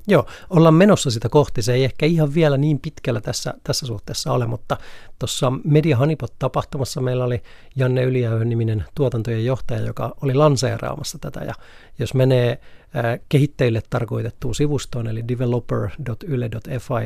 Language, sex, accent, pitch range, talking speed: Finnish, male, native, 115-135 Hz, 145 wpm